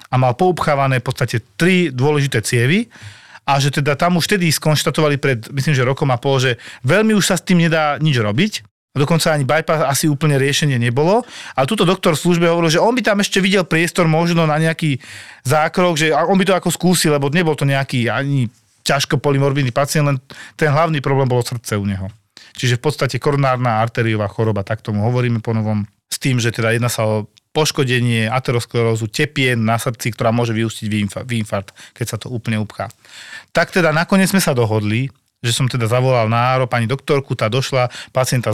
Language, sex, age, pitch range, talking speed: Slovak, male, 40-59, 115-155 Hz, 195 wpm